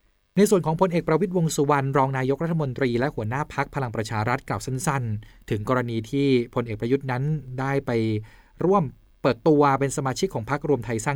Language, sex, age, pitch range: Thai, male, 20-39, 110-140 Hz